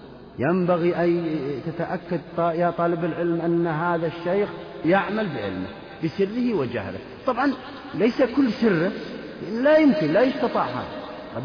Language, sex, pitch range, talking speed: Arabic, male, 140-205 Hz, 115 wpm